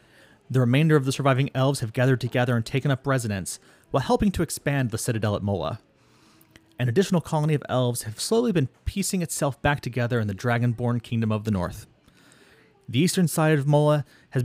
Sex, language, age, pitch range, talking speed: male, English, 30-49, 115-140 Hz, 190 wpm